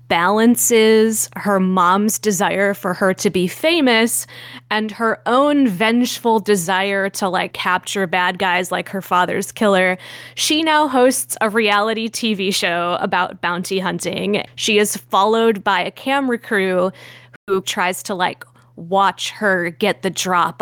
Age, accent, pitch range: 20-39, American, 185-230 Hz